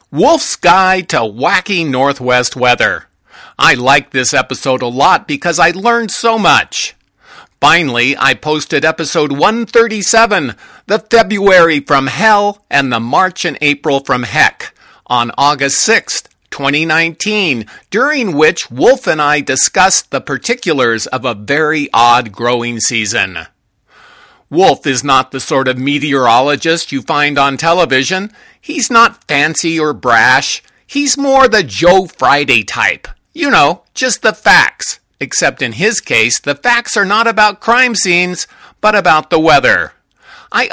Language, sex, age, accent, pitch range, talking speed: English, male, 50-69, American, 135-205 Hz, 140 wpm